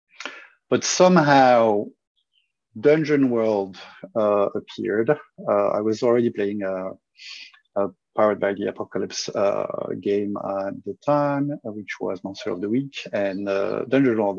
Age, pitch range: 50-69, 100-120 Hz